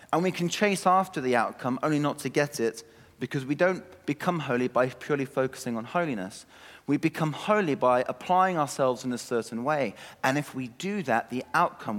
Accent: British